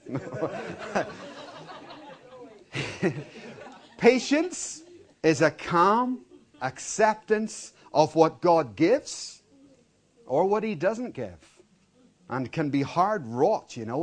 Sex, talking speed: male, 90 wpm